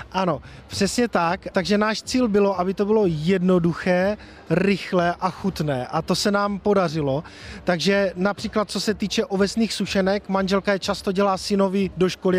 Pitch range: 180-205 Hz